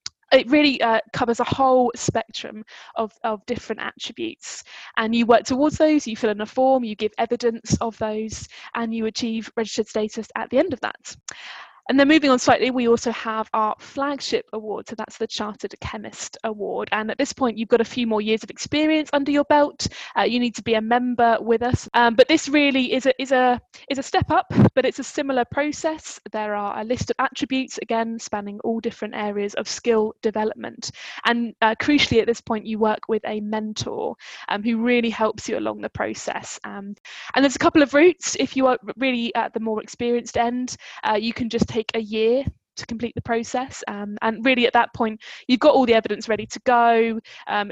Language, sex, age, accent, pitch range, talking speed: English, female, 10-29, British, 220-260 Hz, 215 wpm